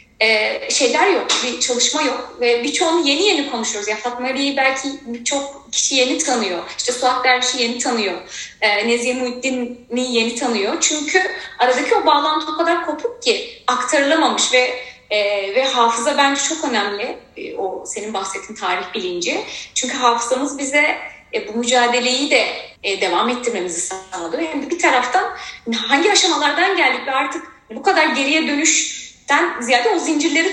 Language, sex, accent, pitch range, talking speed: Turkish, female, native, 220-295 Hz, 155 wpm